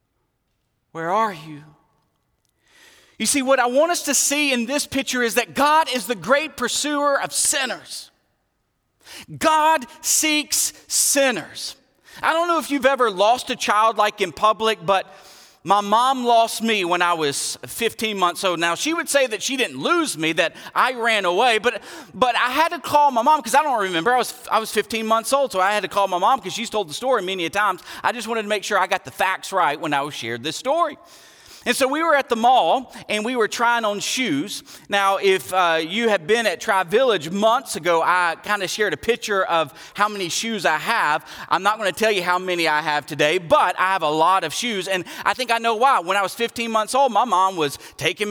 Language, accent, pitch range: English, American, 185-260 Hz